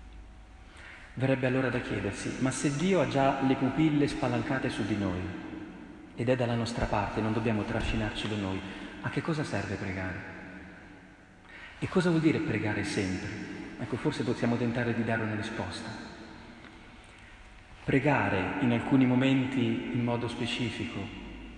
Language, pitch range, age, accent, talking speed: Italian, 105-150 Hz, 40-59, native, 140 wpm